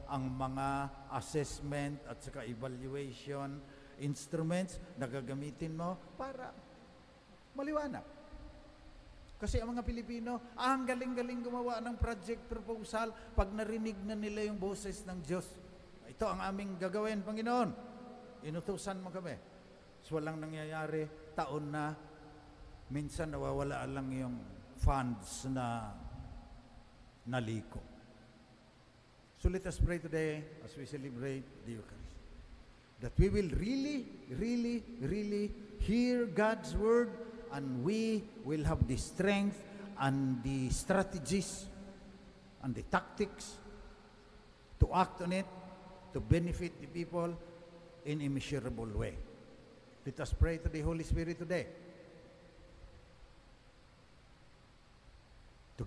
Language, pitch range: English, 135-205 Hz